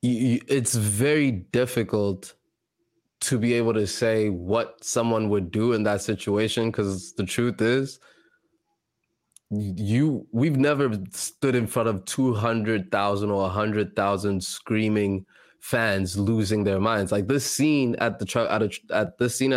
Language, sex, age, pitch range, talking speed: English, male, 20-39, 105-120 Hz, 145 wpm